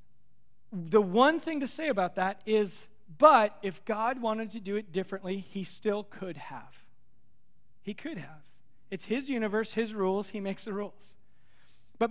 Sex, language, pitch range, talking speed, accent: male, English, 185-240 Hz, 165 wpm, American